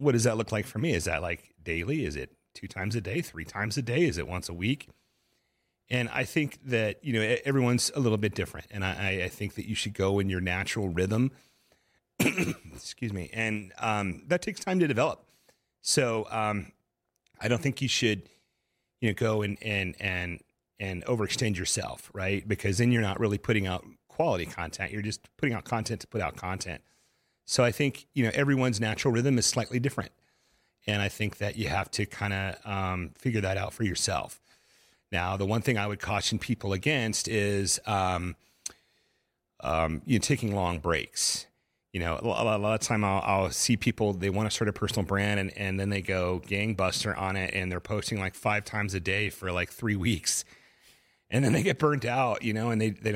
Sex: male